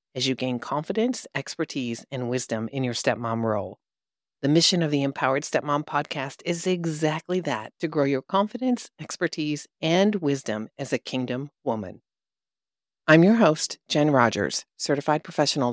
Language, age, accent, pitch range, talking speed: English, 40-59, American, 130-175 Hz, 150 wpm